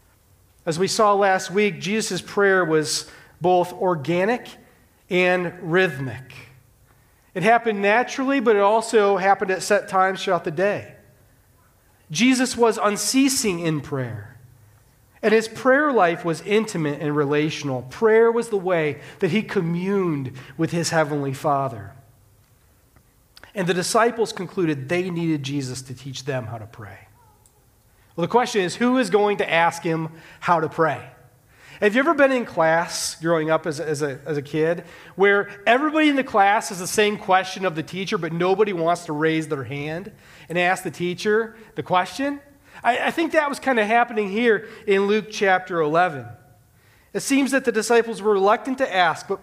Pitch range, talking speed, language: 150-215 Hz, 170 wpm, English